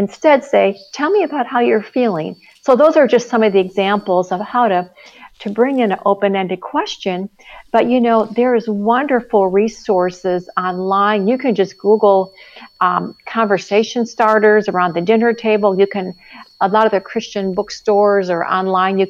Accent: American